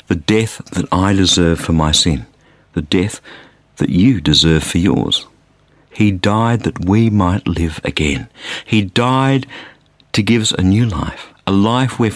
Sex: male